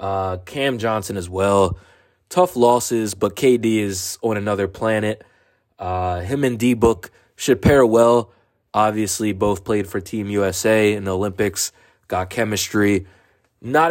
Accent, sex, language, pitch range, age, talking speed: American, male, English, 100-130 Hz, 20-39, 140 wpm